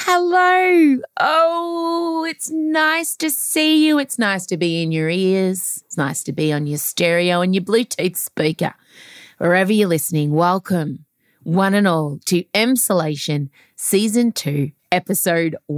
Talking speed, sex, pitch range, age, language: 140 wpm, female, 165-250 Hz, 30-49, English